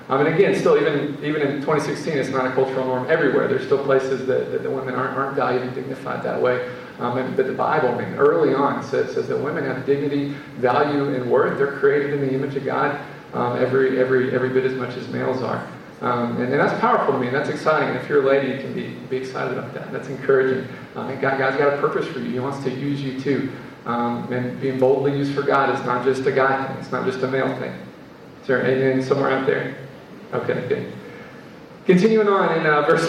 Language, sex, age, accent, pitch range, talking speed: English, male, 40-59, American, 130-160 Hz, 245 wpm